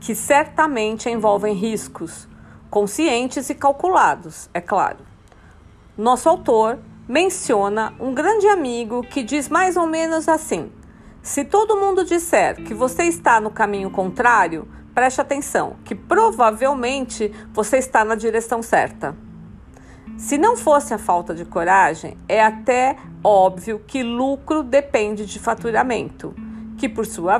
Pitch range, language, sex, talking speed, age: 215-295 Hz, Portuguese, female, 125 wpm, 50-69